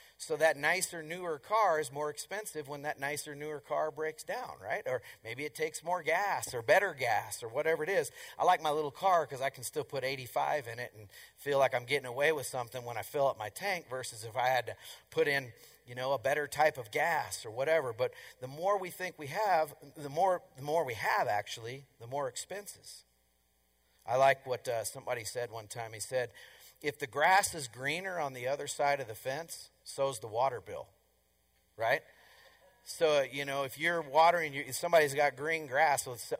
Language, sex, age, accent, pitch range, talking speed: English, male, 40-59, American, 120-155 Hz, 215 wpm